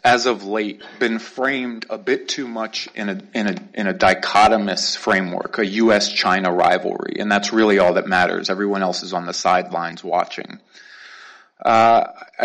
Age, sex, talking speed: 30-49, male, 165 wpm